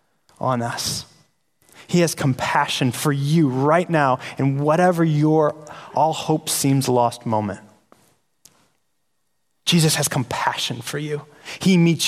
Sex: male